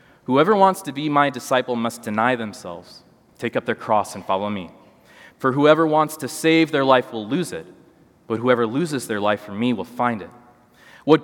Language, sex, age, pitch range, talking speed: English, male, 20-39, 110-140 Hz, 200 wpm